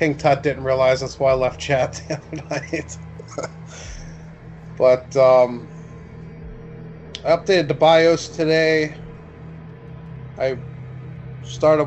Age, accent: 20-39, American